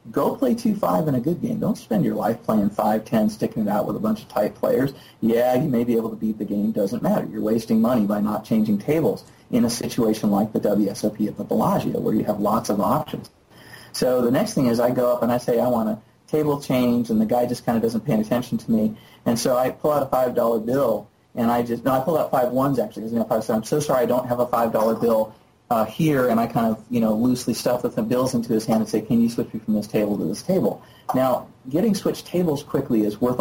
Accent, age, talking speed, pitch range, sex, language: American, 40-59, 265 wpm, 115-155 Hz, male, English